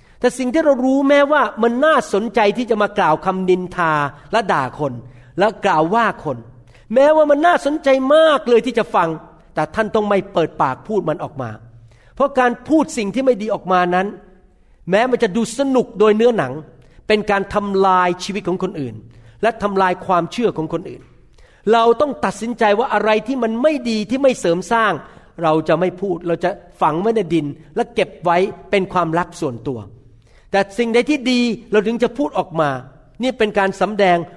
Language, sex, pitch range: Thai, male, 160-230 Hz